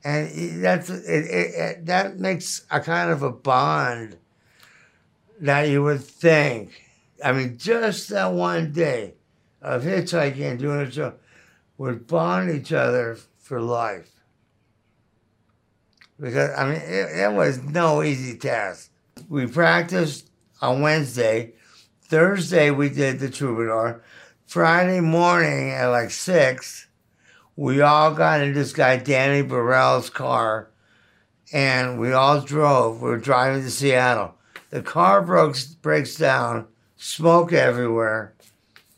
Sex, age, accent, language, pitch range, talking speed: male, 60-79, American, English, 120-165 Hz, 125 wpm